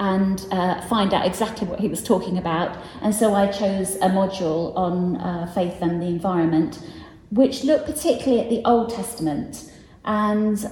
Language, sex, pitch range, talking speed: English, female, 185-220 Hz, 170 wpm